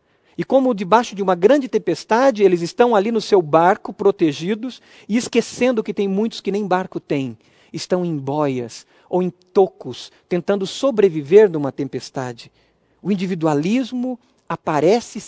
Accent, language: Brazilian, Portuguese